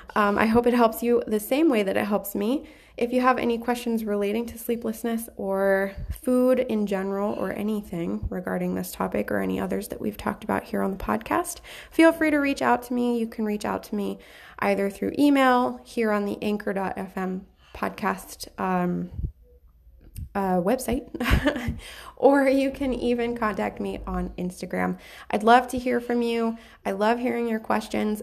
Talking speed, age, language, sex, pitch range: 180 wpm, 20-39, English, female, 190-245 Hz